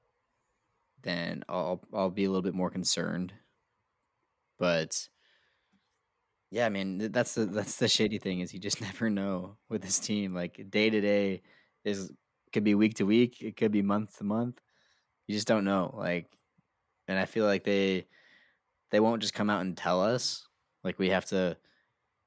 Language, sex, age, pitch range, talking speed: English, male, 20-39, 90-105 Hz, 175 wpm